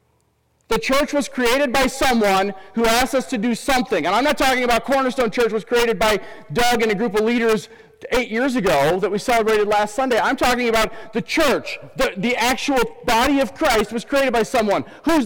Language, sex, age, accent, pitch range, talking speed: English, male, 40-59, American, 215-260 Hz, 205 wpm